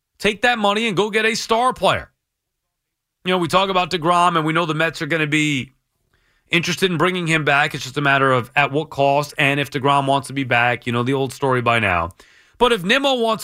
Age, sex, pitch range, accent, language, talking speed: 30-49, male, 140-195 Hz, American, English, 245 wpm